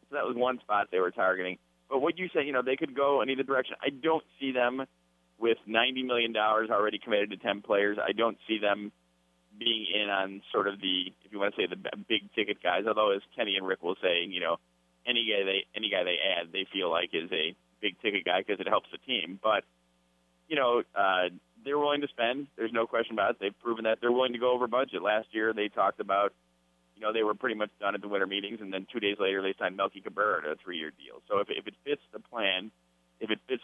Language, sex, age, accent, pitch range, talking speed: English, male, 20-39, American, 90-120 Hz, 240 wpm